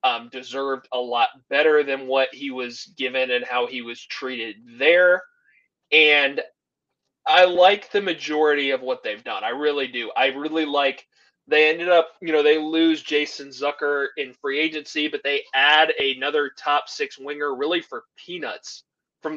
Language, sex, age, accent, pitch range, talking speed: English, male, 20-39, American, 135-155 Hz, 165 wpm